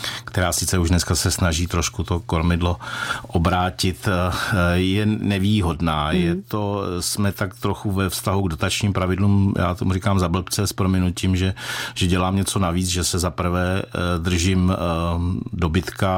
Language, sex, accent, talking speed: Czech, male, native, 140 wpm